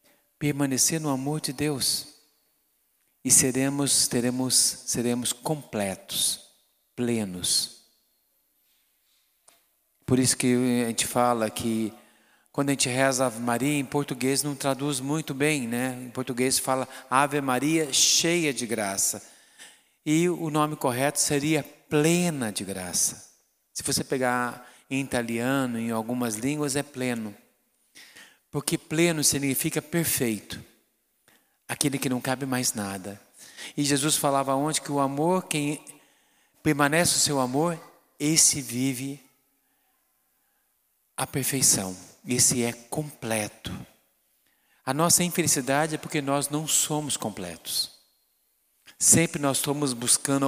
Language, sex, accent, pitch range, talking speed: Portuguese, male, Brazilian, 125-150 Hz, 115 wpm